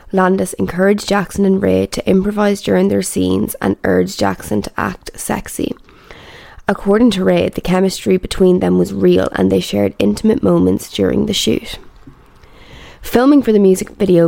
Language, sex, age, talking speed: English, female, 20-39, 160 wpm